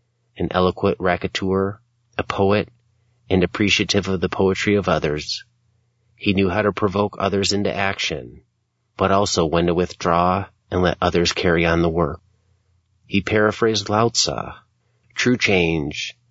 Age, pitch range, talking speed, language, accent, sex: 40-59, 90-110 Hz, 140 wpm, English, American, male